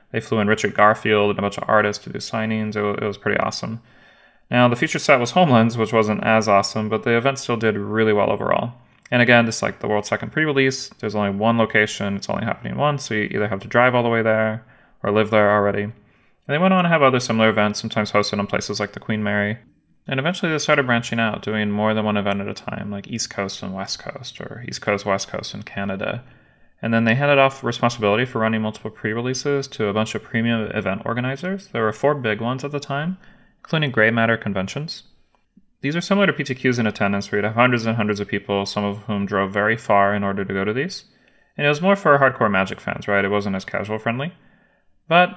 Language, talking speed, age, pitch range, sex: English, 240 wpm, 20-39, 105-135 Hz, male